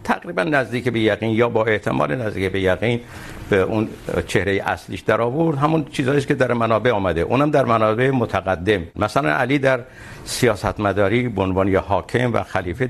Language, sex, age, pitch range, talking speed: Urdu, male, 60-79, 100-130 Hz, 165 wpm